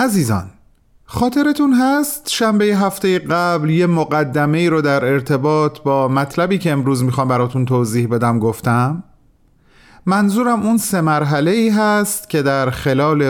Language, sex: Persian, male